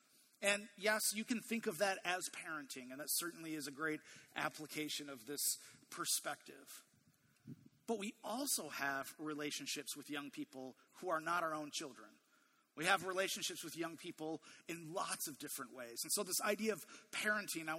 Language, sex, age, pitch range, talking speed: English, male, 30-49, 155-215 Hz, 170 wpm